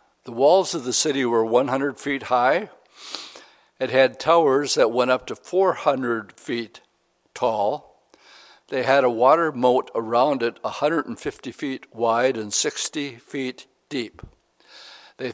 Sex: male